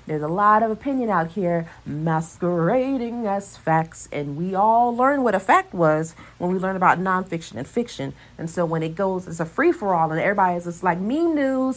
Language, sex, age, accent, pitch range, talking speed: English, female, 30-49, American, 155-195 Hz, 205 wpm